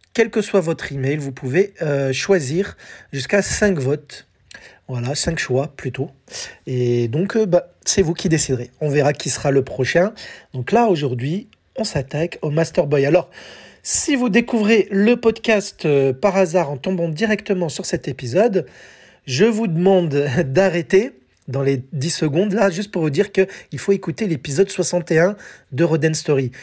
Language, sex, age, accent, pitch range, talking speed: French, male, 40-59, French, 140-190 Hz, 165 wpm